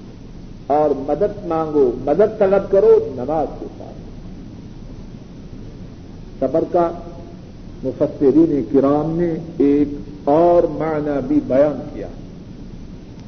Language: Urdu